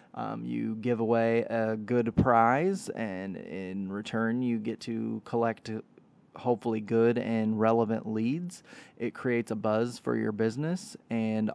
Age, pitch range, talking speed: 20-39, 110-125 Hz, 140 wpm